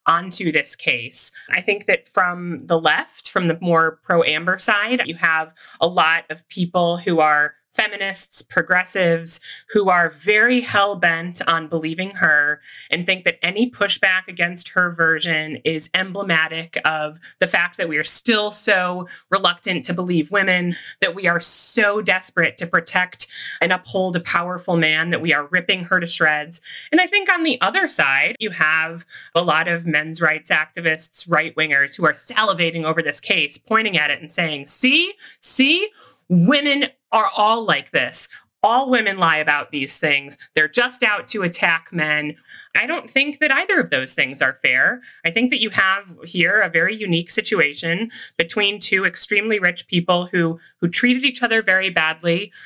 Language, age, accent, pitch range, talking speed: English, 30-49, American, 165-210 Hz, 170 wpm